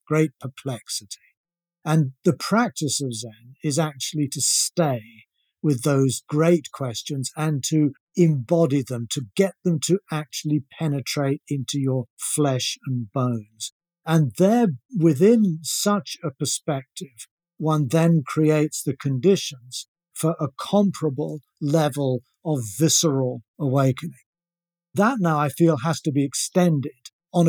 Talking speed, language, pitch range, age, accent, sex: 125 wpm, English, 135-175 Hz, 50-69, British, male